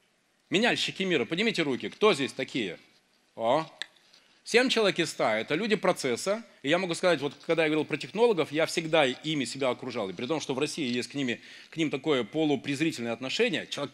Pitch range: 135-180 Hz